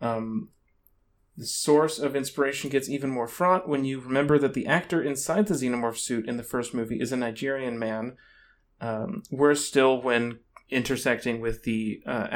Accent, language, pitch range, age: American, English, 110-140 Hz, 30-49